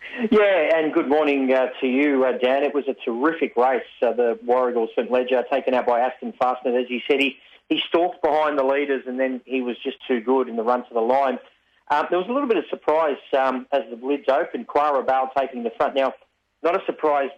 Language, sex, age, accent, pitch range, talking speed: English, male, 40-59, Australian, 125-145 Hz, 230 wpm